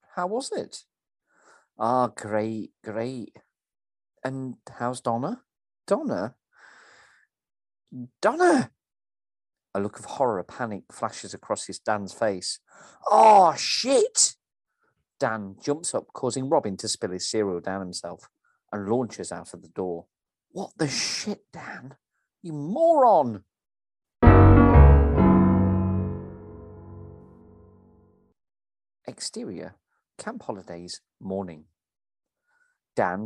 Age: 40-59